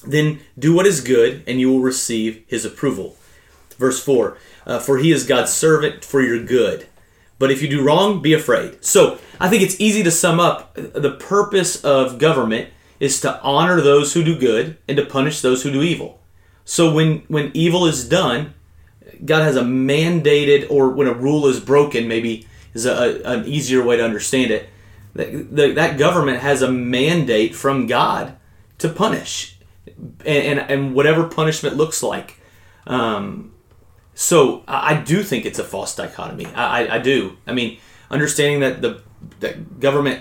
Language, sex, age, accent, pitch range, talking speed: English, male, 30-49, American, 125-155 Hz, 175 wpm